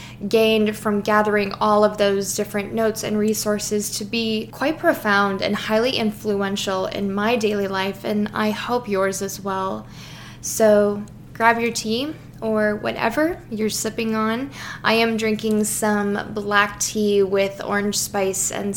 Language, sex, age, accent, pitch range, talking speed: English, female, 10-29, American, 195-215 Hz, 145 wpm